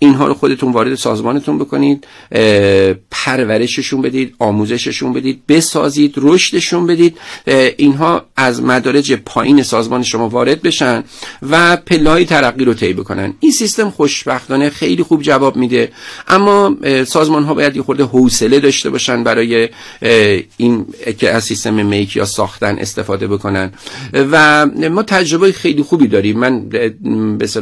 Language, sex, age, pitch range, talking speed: Persian, male, 50-69, 110-140 Hz, 135 wpm